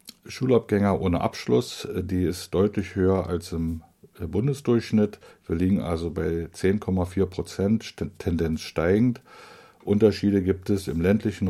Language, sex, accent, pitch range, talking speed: German, male, German, 85-100 Hz, 120 wpm